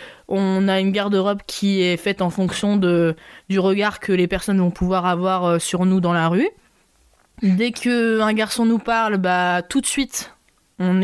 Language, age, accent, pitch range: French, 20-39, French, 180-210 Hz